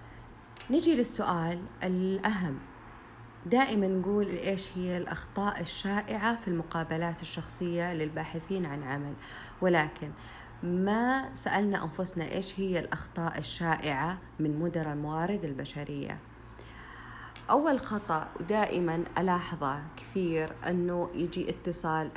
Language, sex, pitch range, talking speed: Arabic, female, 155-195 Hz, 95 wpm